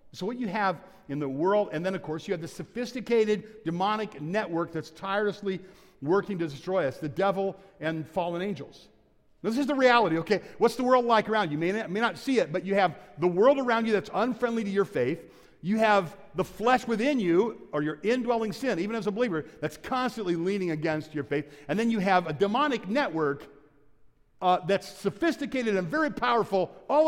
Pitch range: 175-235 Hz